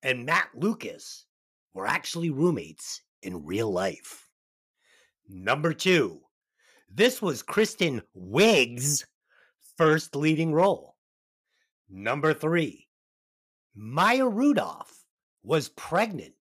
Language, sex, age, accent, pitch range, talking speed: English, male, 50-69, American, 155-255 Hz, 85 wpm